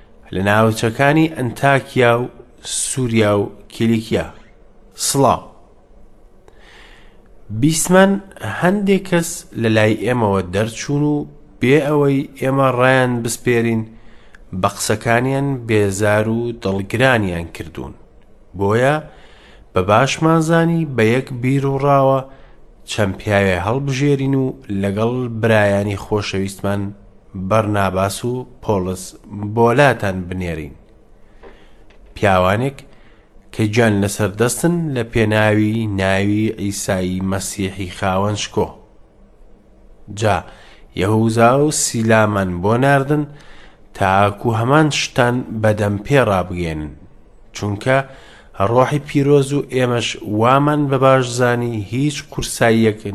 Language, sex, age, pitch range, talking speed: English, male, 30-49, 100-135 Hz, 85 wpm